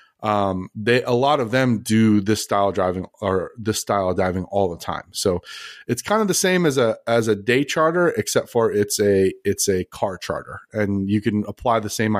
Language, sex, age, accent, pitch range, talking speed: English, male, 30-49, American, 100-125 Hz, 220 wpm